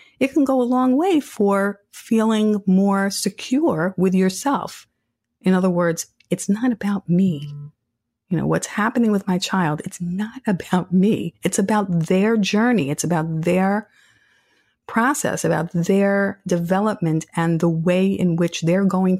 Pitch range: 155-195 Hz